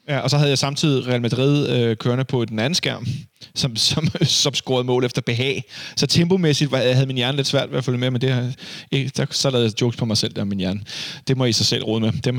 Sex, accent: male, native